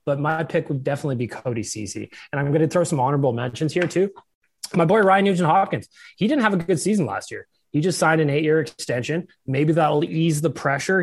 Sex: male